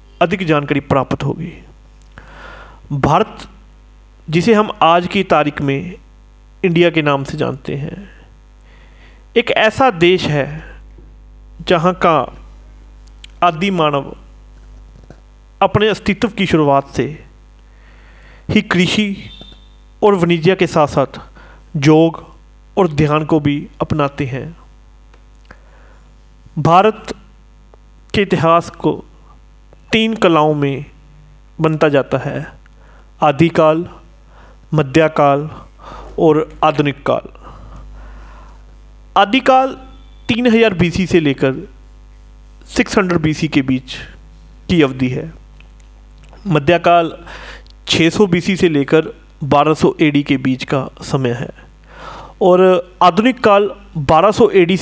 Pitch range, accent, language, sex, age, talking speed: 140-185 Hz, native, Hindi, male, 40-59, 100 wpm